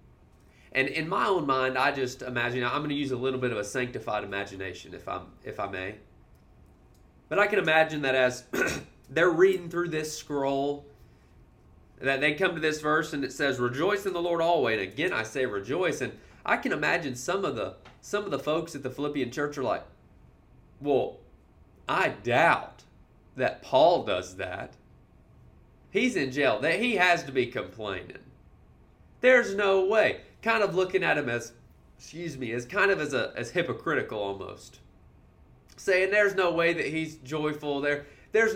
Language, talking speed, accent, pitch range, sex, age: English, 175 wpm, American, 120-155 Hz, male, 30-49